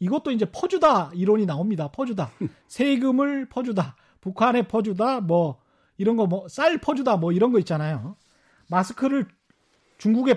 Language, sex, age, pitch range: Korean, male, 40-59, 170-250 Hz